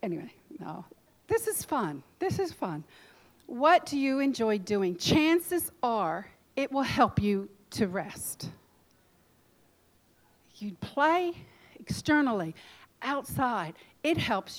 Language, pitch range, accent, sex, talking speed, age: English, 190-245 Hz, American, female, 110 wpm, 50-69